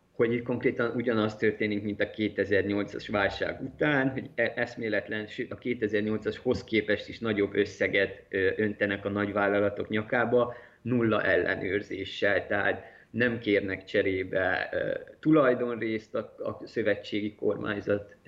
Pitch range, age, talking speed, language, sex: 100-120 Hz, 20-39, 105 wpm, Hungarian, male